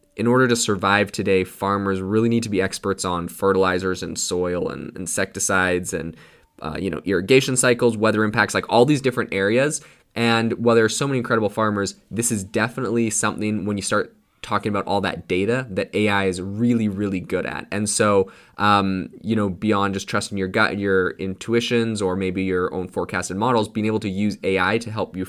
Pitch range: 95-110 Hz